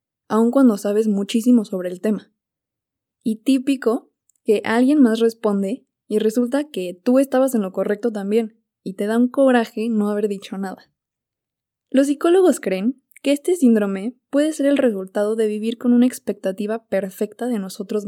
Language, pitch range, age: Spanish, 210-260 Hz, 20-39